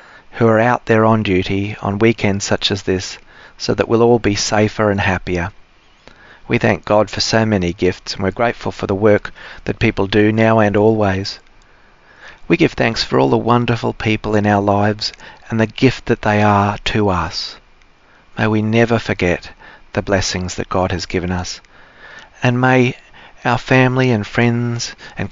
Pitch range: 100-115 Hz